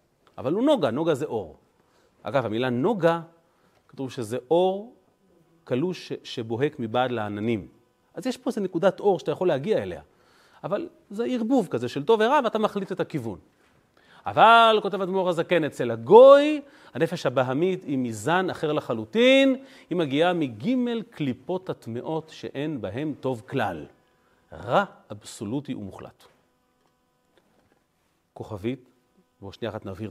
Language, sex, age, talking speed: Hebrew, male, 40-59, 130 wpm